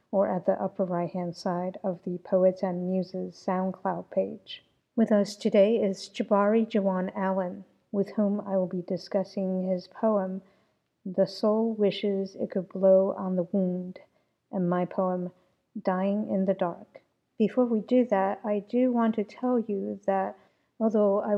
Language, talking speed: English, 160 wpm